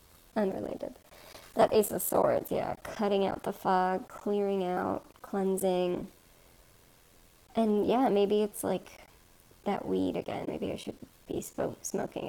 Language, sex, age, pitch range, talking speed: English, male, 20-39, 185-220 Hz, 125 wpm